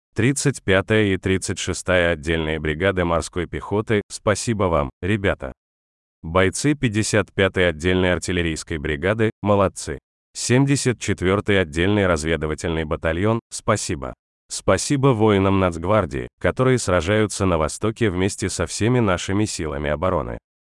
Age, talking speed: 30-49, 100 wpm